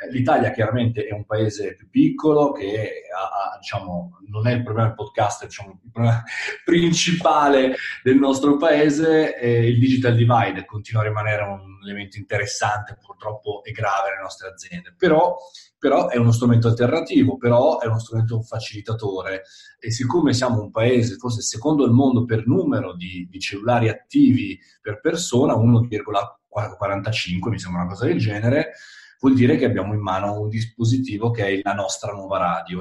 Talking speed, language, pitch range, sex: 160 wpm, Italian, 100-125 Hz, male